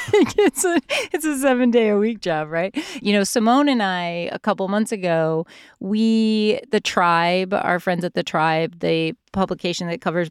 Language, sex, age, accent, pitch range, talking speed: English, female, 30-49, American, 180-235 Hz, 180 wpm